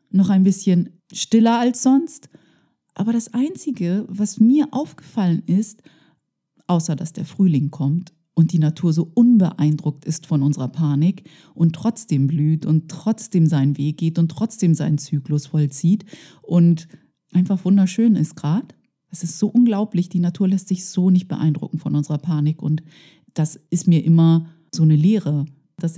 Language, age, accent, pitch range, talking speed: German, 30-49, German, 155-200 Hz, 155 wpm